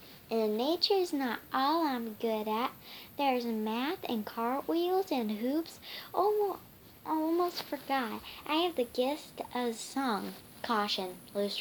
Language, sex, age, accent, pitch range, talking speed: English, male, 10-29, American, 220-335 Hz, 125 wpm